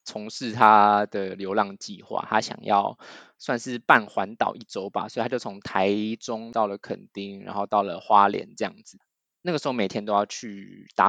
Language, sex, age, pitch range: Chinese, male, 20-39, 100-125 Hz